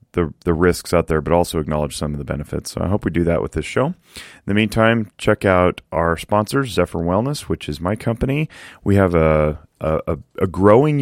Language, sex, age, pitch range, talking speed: English, male, 30-49, 85-105 Hz, 220 wpm